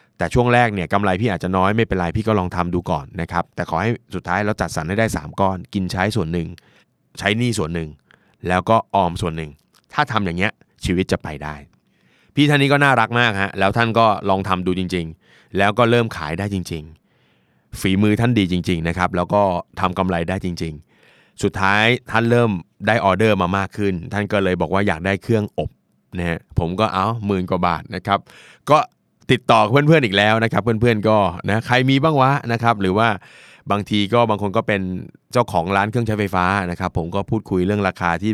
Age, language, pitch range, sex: 20-39, Thai, 90-110 Hz, male